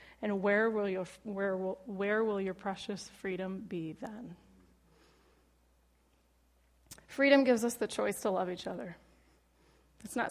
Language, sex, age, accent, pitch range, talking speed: English, female, 20-39, American, 190-230 Hz, 140 wpm